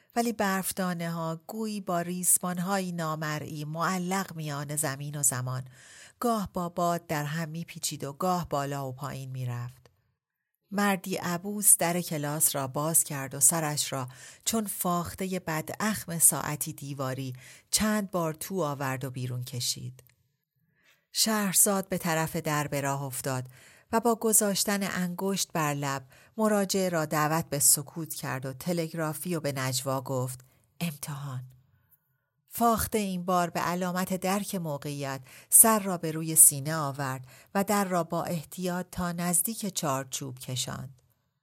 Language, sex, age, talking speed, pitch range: Persian, female, 40-59, 140 wpm, 135-185 Hz